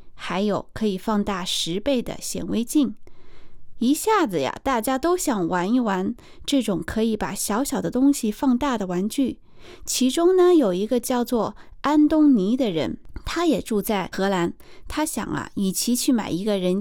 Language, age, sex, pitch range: Chinese, 20-39, female, 195-265 Hz